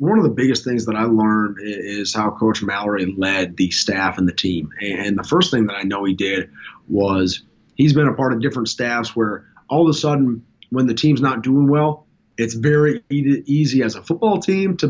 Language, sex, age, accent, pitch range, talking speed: English, male, 30-49, American, 115-145 Hz, 220 wpm